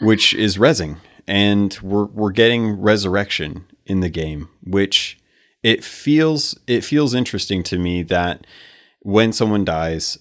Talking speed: 135 wpm